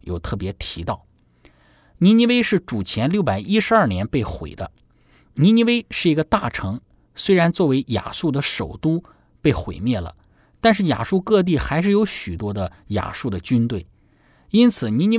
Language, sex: Chinese, male